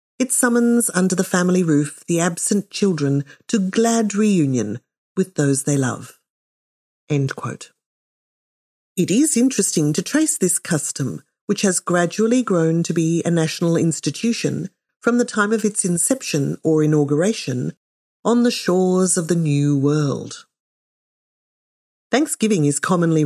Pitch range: 150-215 Hz